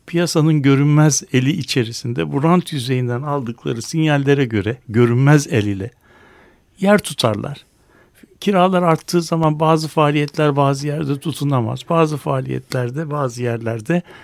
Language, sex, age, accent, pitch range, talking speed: Turkish, male, 60-79, native, 130-165 Hz, 110 wpm